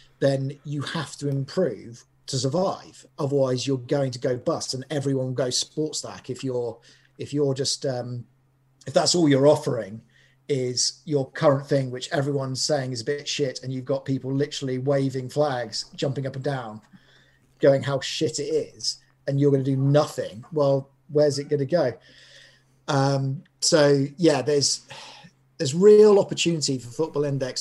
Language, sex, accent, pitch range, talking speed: English, male, British, 130-150 Hz, 165 wpm